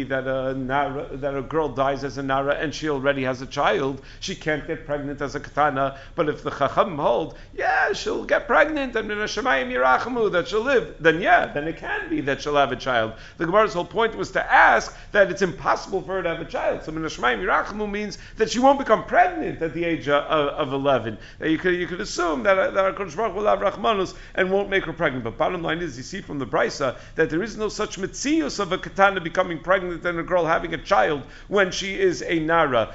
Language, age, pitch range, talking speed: English, 50-69, 145-195 Hz, 230 wpm